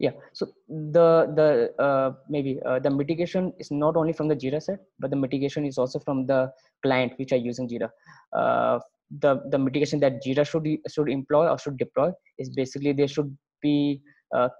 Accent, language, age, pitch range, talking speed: Indian, English, 20-39, 130-155 Hz, 195 wpm